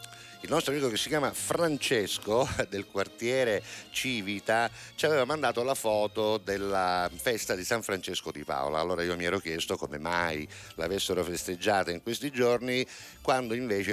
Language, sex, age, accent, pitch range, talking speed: Italian, male, 50-69, native, 90-120 Hz, 155 wpm